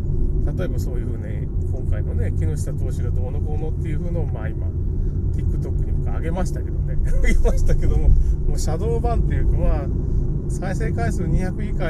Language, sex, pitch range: Japanese, male, 75-85 Hz